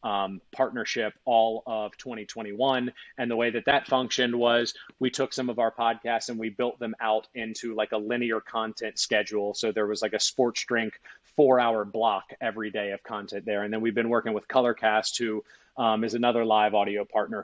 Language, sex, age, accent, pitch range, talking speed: English, male, 30-49, American, 110-125 Hz, 200 wpm